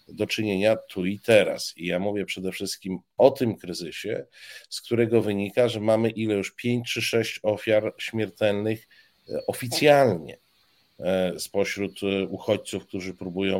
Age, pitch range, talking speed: 50-69, 100-120 Hz, 130 wpm